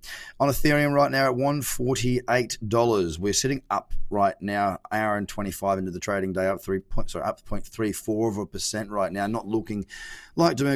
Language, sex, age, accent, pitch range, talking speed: English, male, 30-49, Australian, 95-115 Hz, 220 wpm